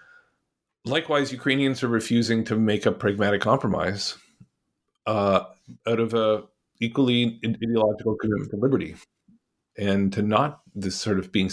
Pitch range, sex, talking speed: 95-115 Hz, male, 130 wpm